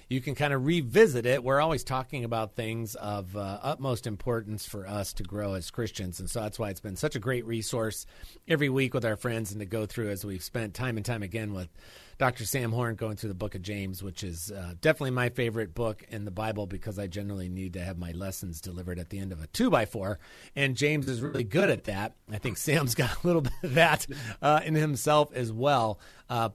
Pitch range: 100-130 Hz